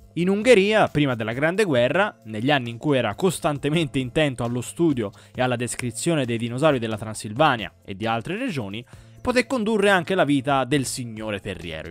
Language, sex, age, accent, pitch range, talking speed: Italian, male, 20-39, native, 115-175 Hz, 170 wpm